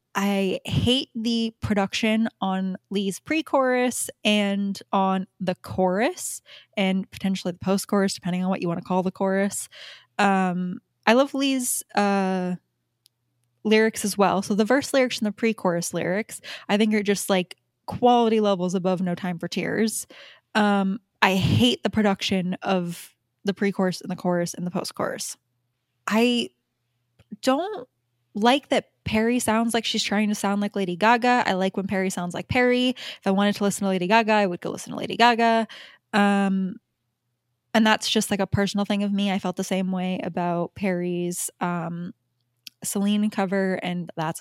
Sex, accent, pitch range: female, American, 180-210 Hz